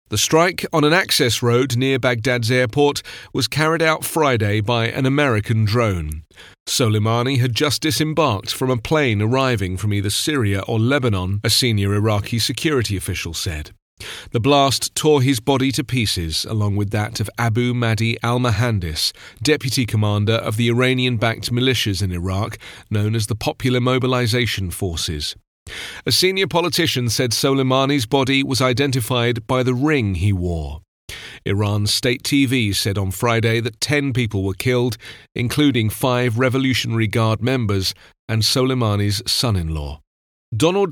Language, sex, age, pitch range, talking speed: English, male, 40-59, 105-130 Hz, 140 wpm